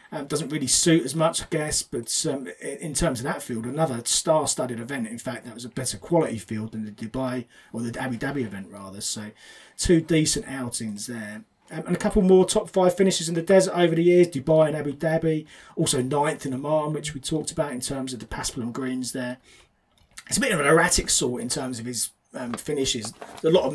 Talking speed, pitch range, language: 230 wpm, 130-170 Hz, English